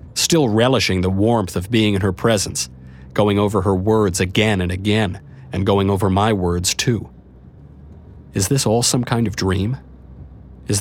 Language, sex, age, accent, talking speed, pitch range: English, male, 50-69, American, 165 wpm, 95-130 Hz